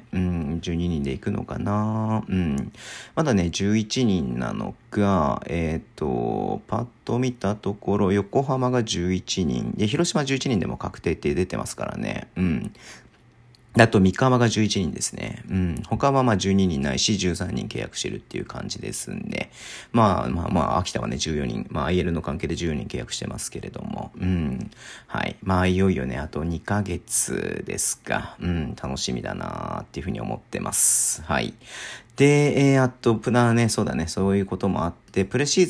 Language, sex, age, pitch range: Japanese, male, 40-59, 90-120 Hz